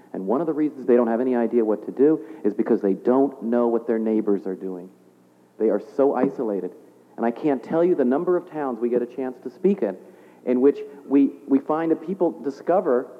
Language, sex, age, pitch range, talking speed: English, male, 50-69, 115-155 Hz, 230 wpm